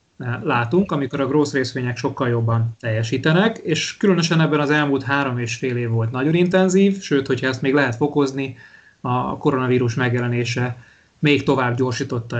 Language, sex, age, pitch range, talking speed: Hungarian, male, 30-49, 125-150 Hz, 155 wpm